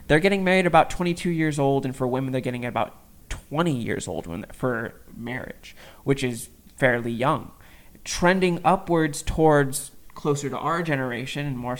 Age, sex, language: 20-39, male, English